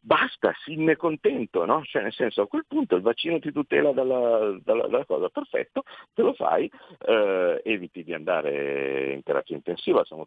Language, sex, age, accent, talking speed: Italian, male, 50-69, native, 185 wpm